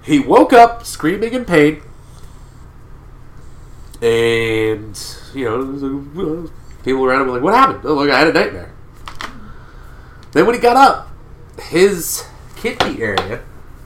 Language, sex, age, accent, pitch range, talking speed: English, male, 30-49, American, 120-175 Hz, 125 wpm